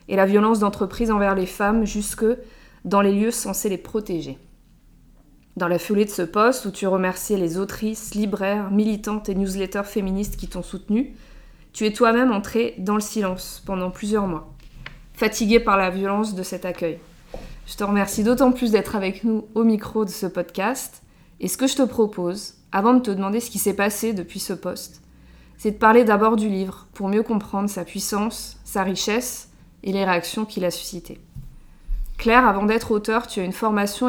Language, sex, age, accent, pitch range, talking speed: English, female, 20-39, French, 190-215 Hz, 190 wpm